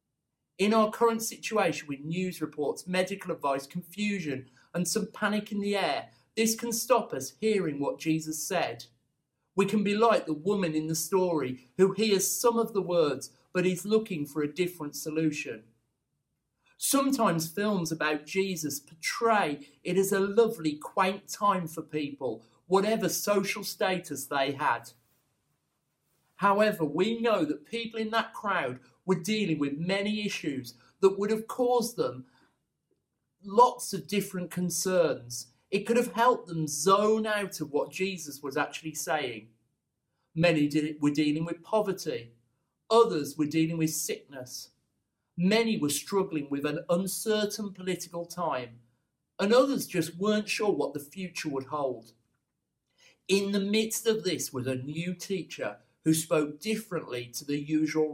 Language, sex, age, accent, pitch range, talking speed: English, male, 40-59, British, 145-205 Hz, 145 wpm